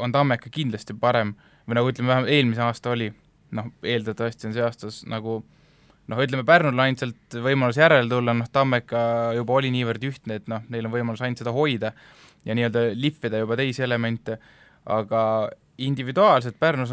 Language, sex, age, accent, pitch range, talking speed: English, male, 20-39, Finnish, 115-135 Hz, 155 wpm